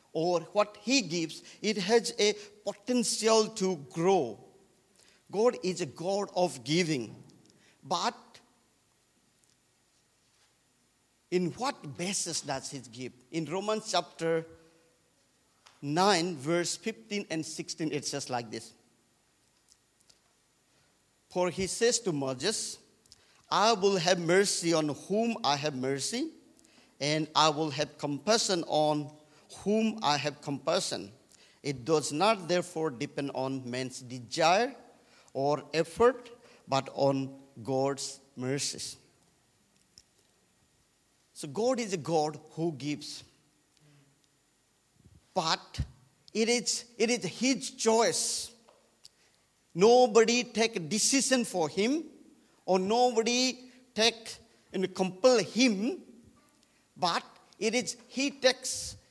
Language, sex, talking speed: English, male, 105 wpm